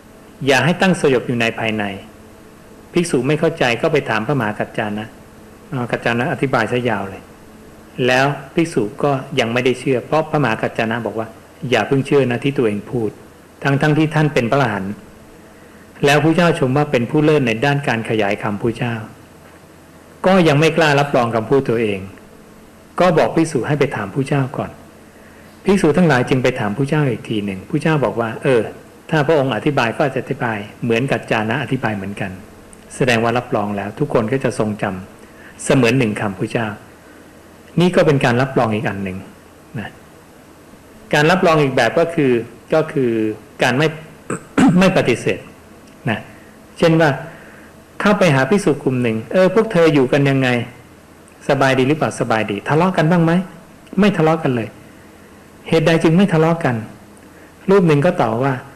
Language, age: English, 60-79